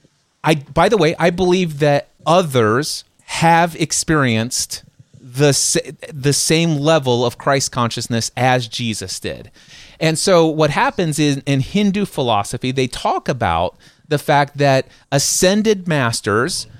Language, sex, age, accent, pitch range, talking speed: English, male, 30-49, American, 130-170 Hz, 130 wpm